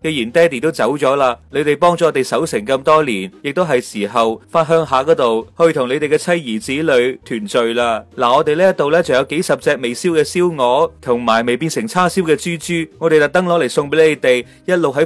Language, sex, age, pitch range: Chinese, male, 30-49, 115-165 Hz